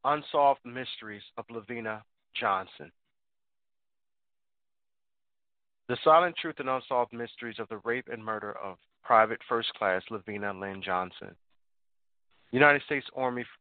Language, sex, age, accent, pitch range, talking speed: English, male, 30-49, American, 105-125 Hz, 115 wpm